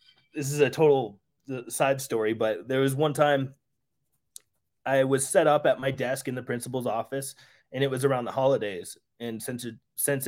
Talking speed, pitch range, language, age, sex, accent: 185 wpm, 115-150 Hz, English, 20-39, male, American